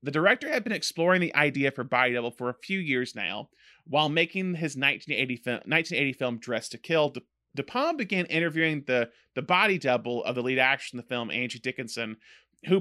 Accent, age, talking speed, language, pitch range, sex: American, 30-49, 200 wpm, English, 125-160 Hz, male